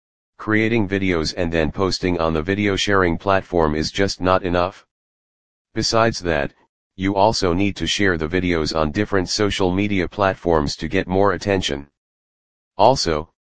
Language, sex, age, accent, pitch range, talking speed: English, male, 40-59, American, 80-100 Hz, 150 wpm